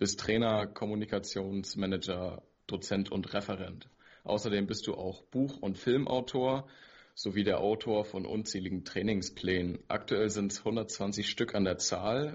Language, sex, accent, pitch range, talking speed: German, male, German, 95-110 Hz, 130 wpm